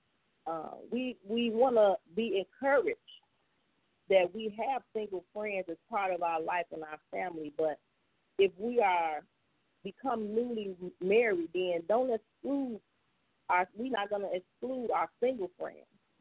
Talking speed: 135 wpm